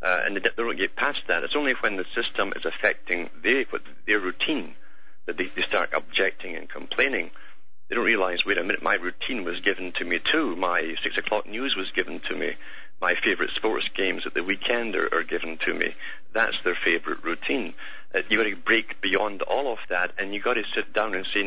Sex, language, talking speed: male, English, 215 wpm